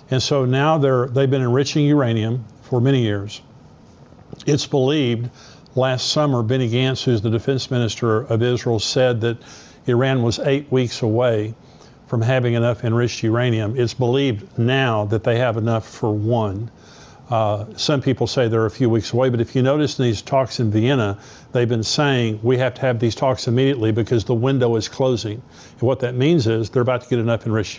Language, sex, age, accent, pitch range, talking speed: English, male, 50-69, American, 115-135 Hz, 190 wpm